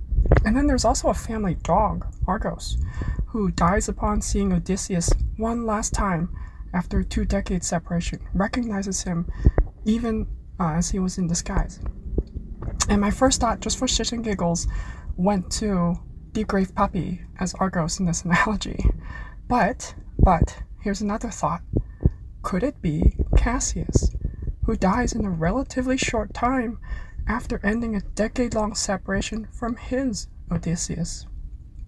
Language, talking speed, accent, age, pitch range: English, 135 wpm, American, 20-39, 175-230 Hz